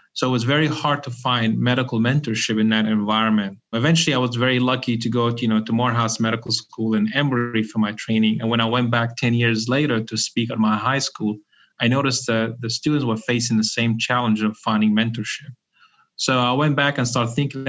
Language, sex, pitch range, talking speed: English, male, 110-125 Hz, 220 wpm